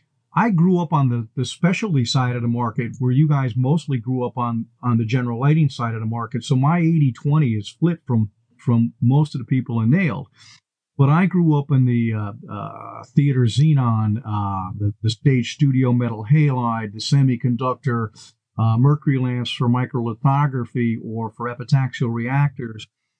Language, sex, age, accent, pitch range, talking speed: English, male, 50-69, American, 120-140 Hz, 180 wpm